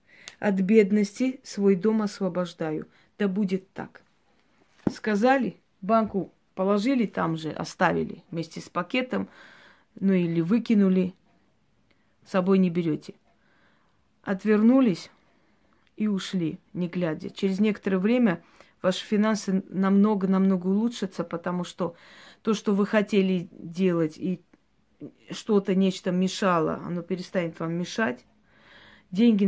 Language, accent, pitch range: Russian, native, 180-210 Hz